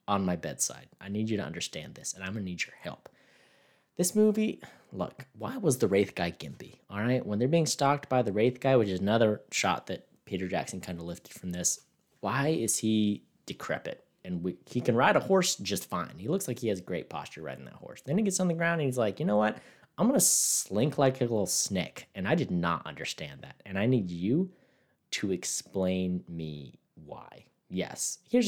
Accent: American